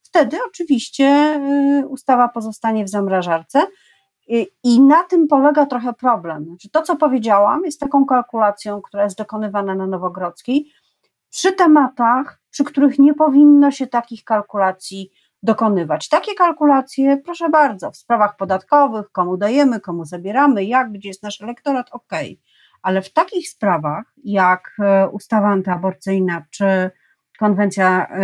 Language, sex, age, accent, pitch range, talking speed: Polish, female, 40-59, native, 195-280 Hz, 130 wpm